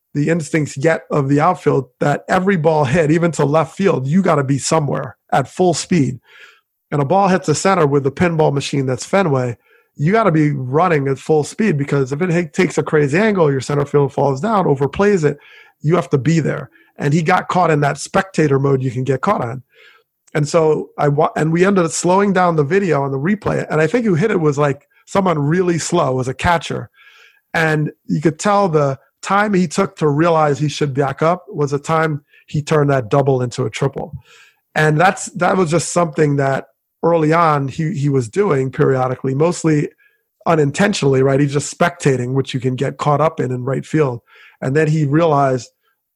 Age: 30-49